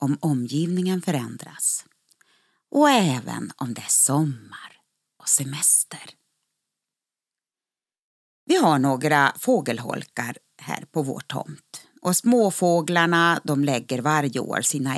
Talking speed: 105 wpm